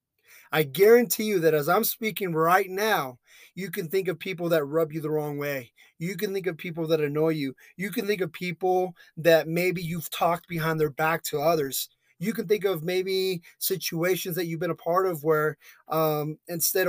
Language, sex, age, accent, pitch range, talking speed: English, male, 30-49, American, 150-180 Hz, 205 wpm